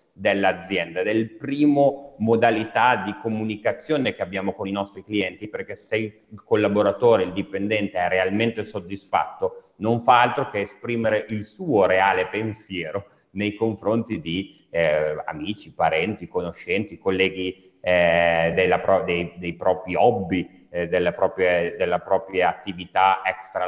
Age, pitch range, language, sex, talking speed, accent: 30-49, 100-120 Hz, Italian, male, 130 wpm, native